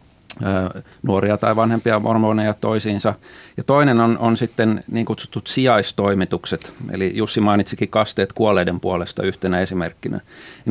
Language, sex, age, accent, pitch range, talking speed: Finnish, male, 30-49, native, 100-120 Hz, 125 wpm